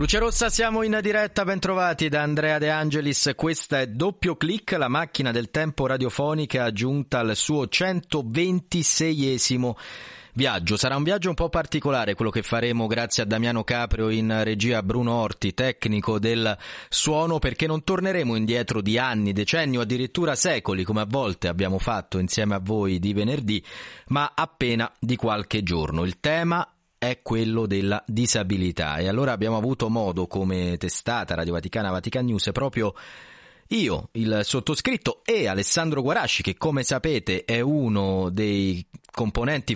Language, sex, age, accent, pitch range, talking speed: Italian, male, 30-49, native, 100-135 Hz, 150 wpm